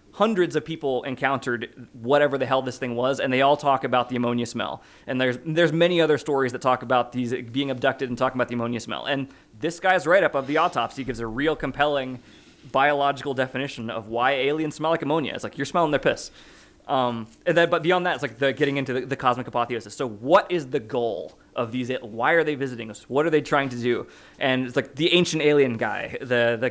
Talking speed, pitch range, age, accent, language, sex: 230 wpm, 125-150 Hz, 20-39, American, English, male